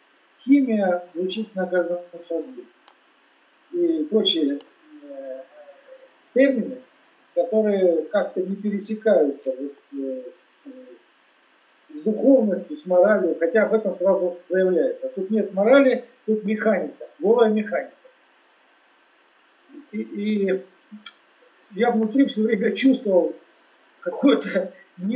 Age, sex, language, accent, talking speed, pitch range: 50-69, male, Russian, native, 90 wpm, 180-245 Hz